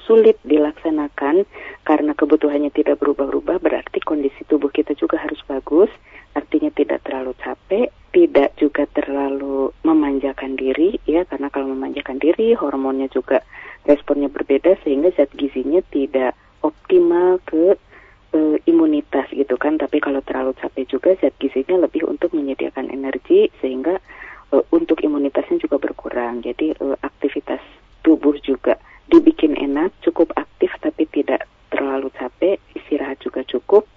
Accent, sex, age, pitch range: native, female, 30-49, 140-185 Hz